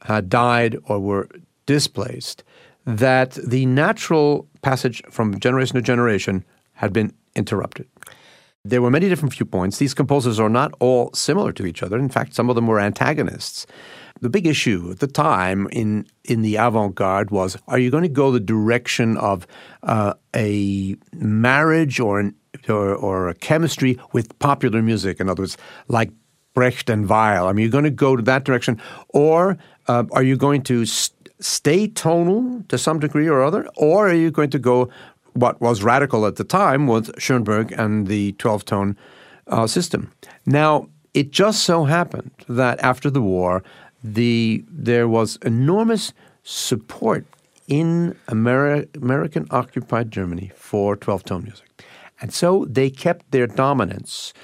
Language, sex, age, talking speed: English, male, 50-69, 160 wpm